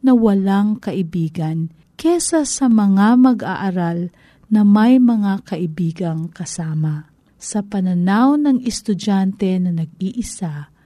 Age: 40-59